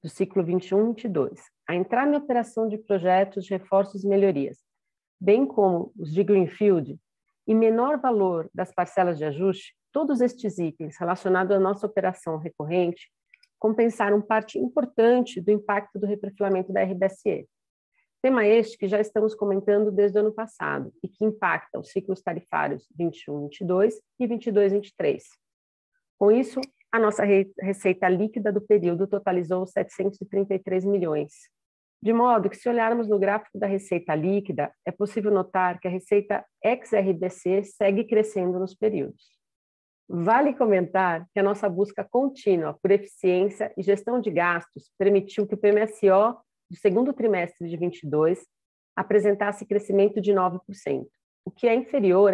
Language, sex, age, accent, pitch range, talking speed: Portuguese, female, 40-59, Brazilian, 185-215 Hz, 140 wpm